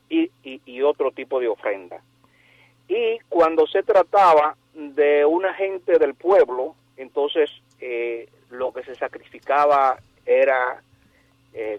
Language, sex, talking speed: Spanish, male, 115 wpm